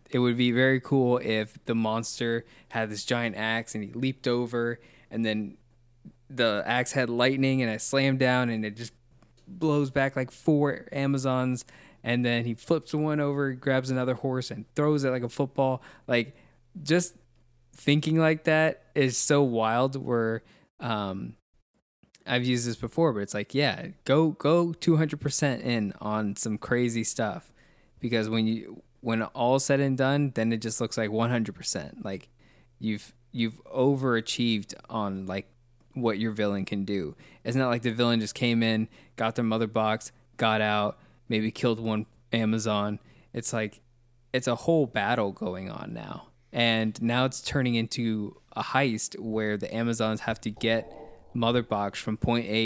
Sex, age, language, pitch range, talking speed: male, 20-39, English, 110-130 Hz, 165 wpm